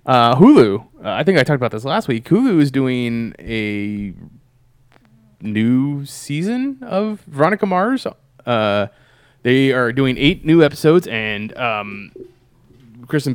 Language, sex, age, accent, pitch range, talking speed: English, male, 20-39, American, 115-140 Hz, 135 wpm